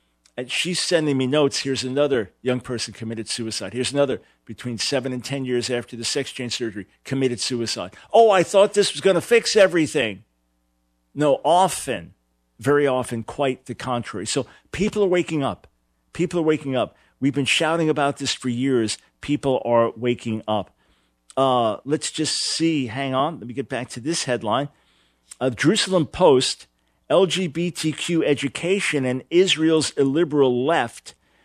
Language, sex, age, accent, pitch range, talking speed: English, male, 50-69, American, 120-170 Hz, 155 wpm